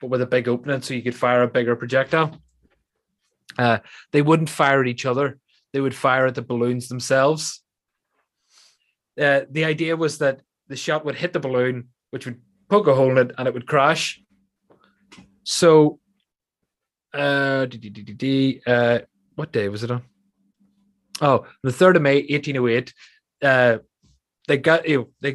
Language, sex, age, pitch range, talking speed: English, male, 20-39, 125-160 Hz, 165 wpm